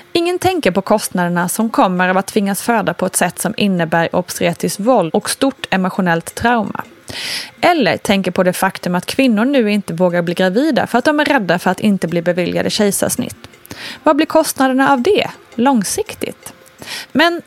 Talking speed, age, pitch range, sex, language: 175 wpm, 20-39, 185-270 Hz, female, Swedish